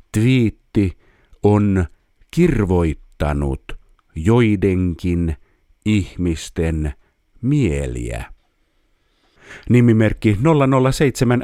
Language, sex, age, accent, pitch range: Finnish, male, 50-69, native, 85-120 Hz